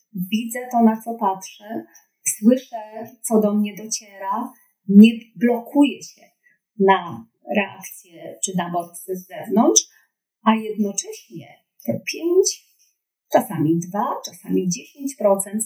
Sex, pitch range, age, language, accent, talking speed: female, 195-250 Hz, 30-49, Polish, native, 105 wpm